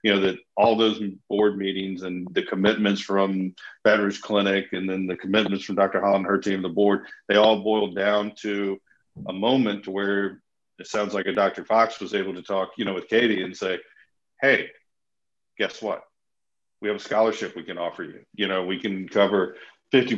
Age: 50-69